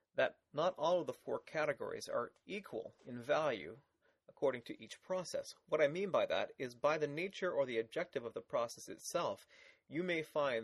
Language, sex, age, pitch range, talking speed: English, male, 30-49, 120-185 Hz, 190 wpm